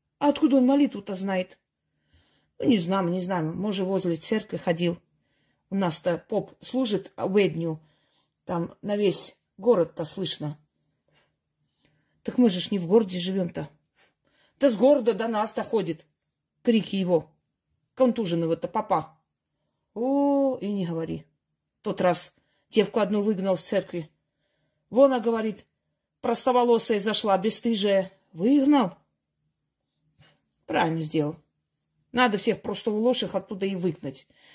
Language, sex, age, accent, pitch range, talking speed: Russian, female, 30-49, native, 170-255 Hz, 125 wpm